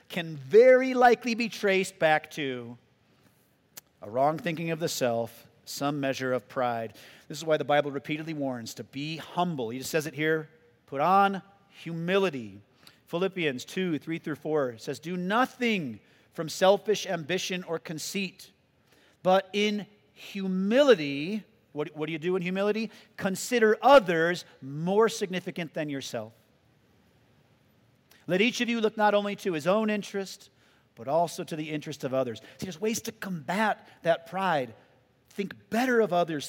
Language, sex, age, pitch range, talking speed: English, male, 40-59, 135-195 Hz, 155 wpm